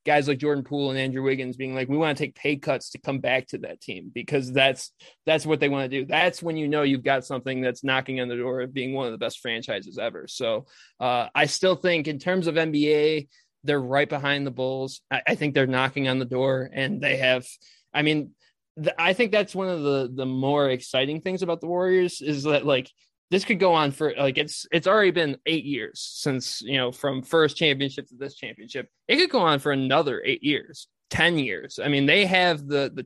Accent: American